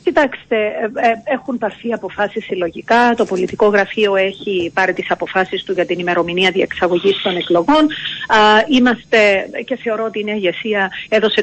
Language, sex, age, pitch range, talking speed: Greek, female, 40-59, 195-240 Hz, 130 wpm